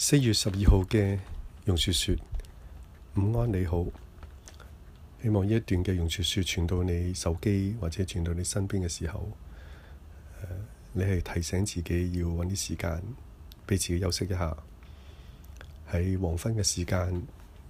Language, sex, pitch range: Chinese, male, 85-100 Hz